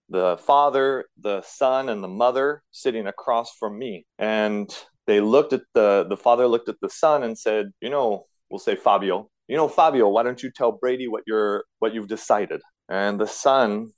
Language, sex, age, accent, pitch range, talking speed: Portuguese, male, 30-49, American, 110-140 Hz, 195 wpm